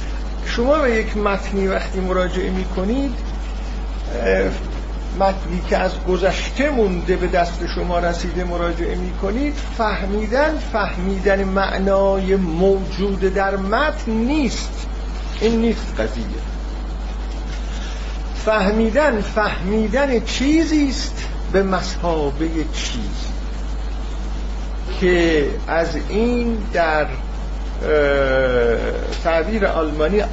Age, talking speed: 50-69, 85 wpm